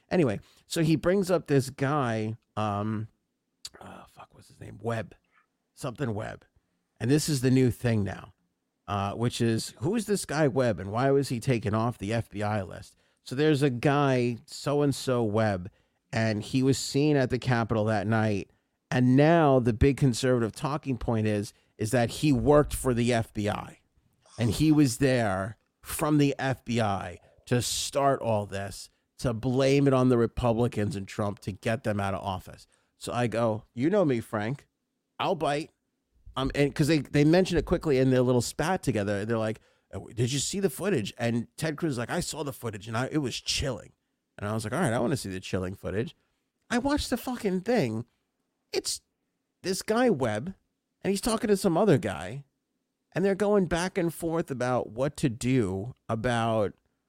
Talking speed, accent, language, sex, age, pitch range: 185 wpm, American, English, male, 30-49, 110-150 Hz